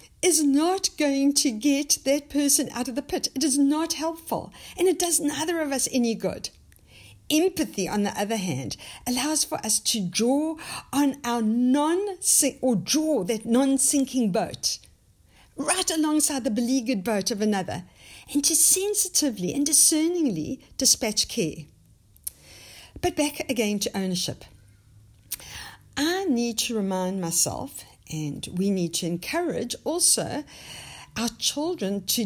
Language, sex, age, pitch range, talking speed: English, female, 60-79, 190-305 Hz, 135 wpm